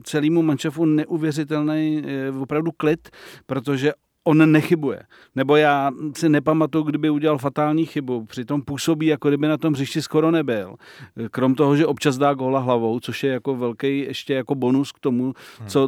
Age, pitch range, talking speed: 40-59, 135-155 Hz, 160 wpm